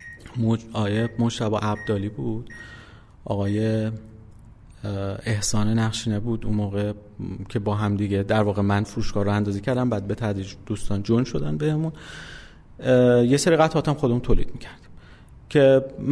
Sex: male